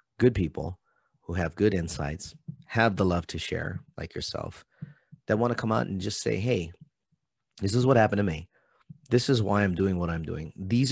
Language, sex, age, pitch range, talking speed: English, male, 30-49, 85-115 Hz, 205 wpm